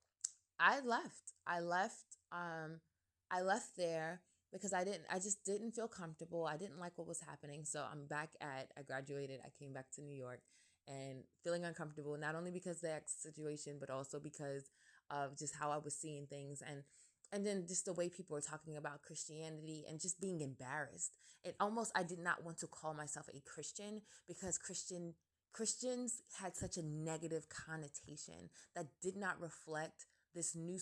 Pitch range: 150-185 Hz